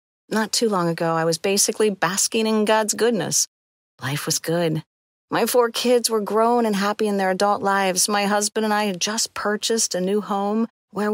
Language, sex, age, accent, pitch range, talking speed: English, female, 40-59, American, 160-205 Hz, 195 wpm